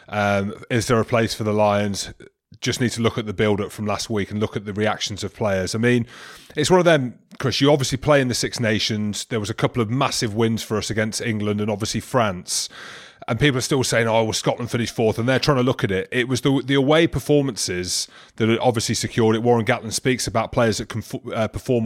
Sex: male